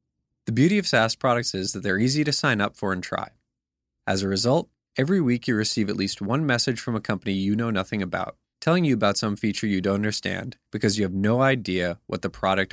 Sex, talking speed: male, 230 wpm